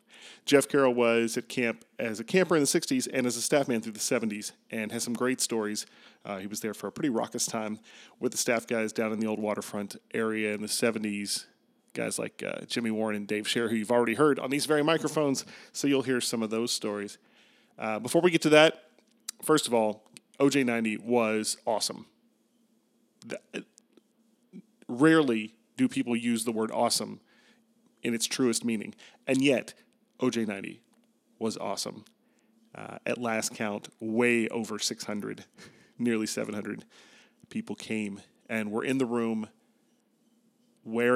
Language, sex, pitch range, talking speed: English, male, 110-135 Hz, 170 wpm